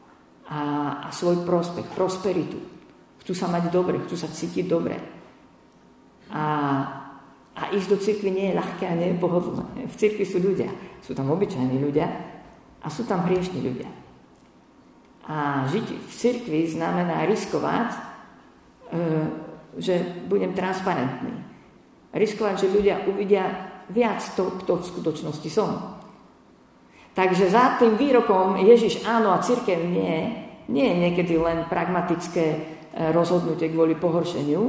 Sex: female